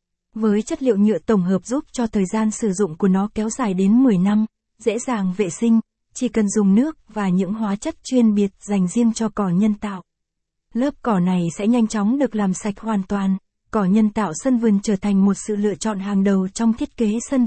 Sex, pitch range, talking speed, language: female, 205-235 Hz, 230 wpm, Vietnamese